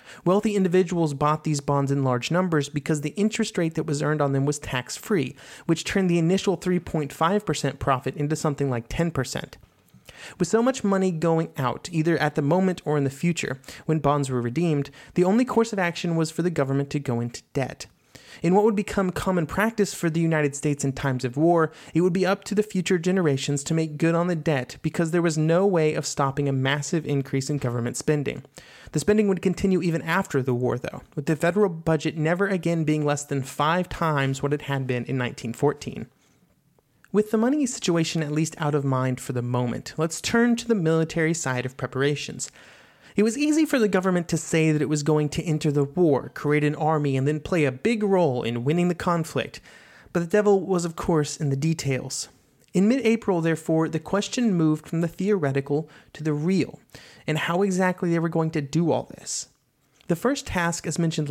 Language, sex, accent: English, male, American